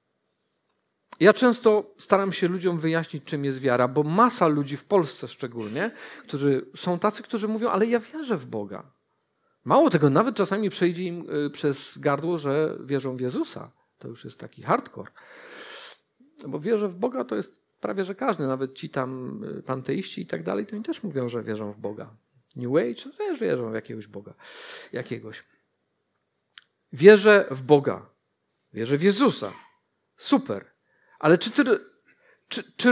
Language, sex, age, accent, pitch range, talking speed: Polish, male, 40-59, native, 145-245 Hz, 160 wpm